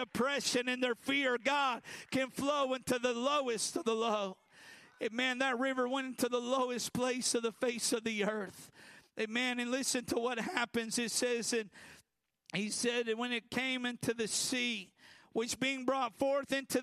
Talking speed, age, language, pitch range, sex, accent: 180 wpm, 50-69, English, 220-250 Hz, male, American